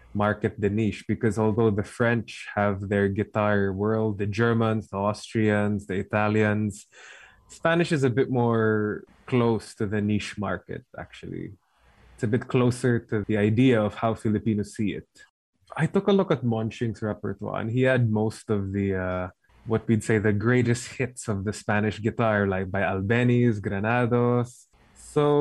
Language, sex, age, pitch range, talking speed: English, male, 20-39, 105-120 Hz, 165 wpm